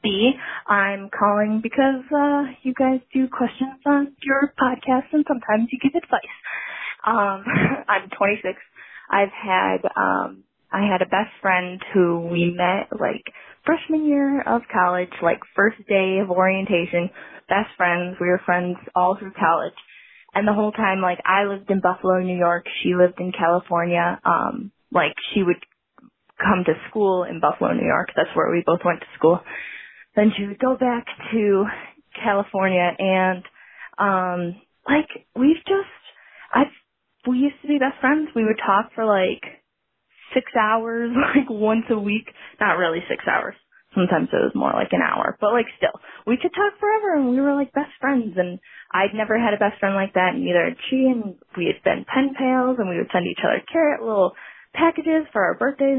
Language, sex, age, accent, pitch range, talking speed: English, female, 20-39, American, 185-265 Hz, 180 wpm